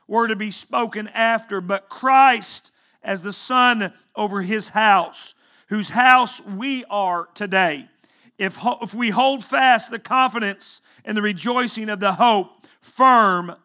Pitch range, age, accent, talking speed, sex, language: 210-260 Hz, 40-59, American, 145 wpm, male, English